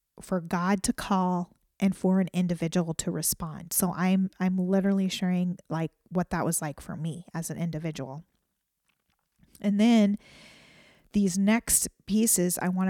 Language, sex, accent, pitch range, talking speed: English, female, American, 175-195 Hz, 150 wpm